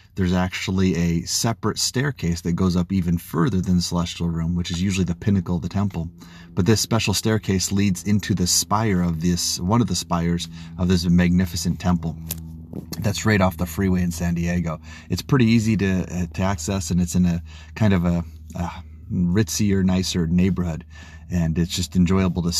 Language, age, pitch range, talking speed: English, 30-49, 85-95 Hz, 200 wpm